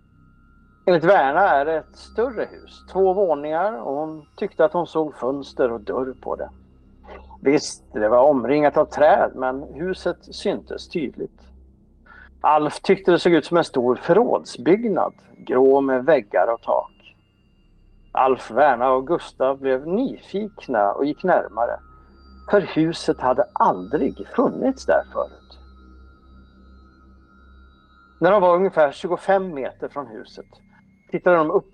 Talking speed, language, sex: 130 wpm, English, male